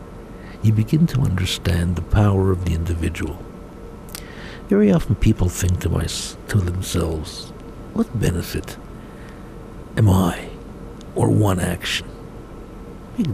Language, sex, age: English, male, 60-79